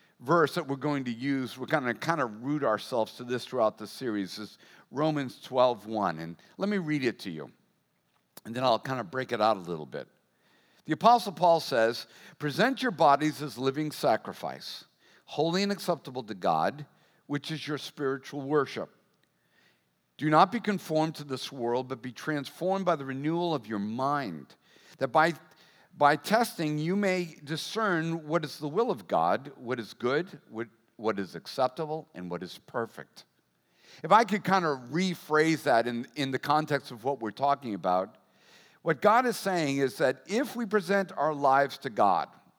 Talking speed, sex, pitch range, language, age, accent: 180 wpm, male, 125-175 Hz, English, 50-69, American